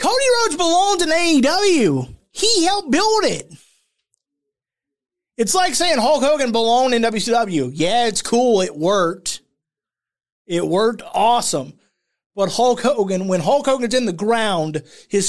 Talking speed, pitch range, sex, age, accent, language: 135 wpm, 195-300 Hz, male, 30-49, American, English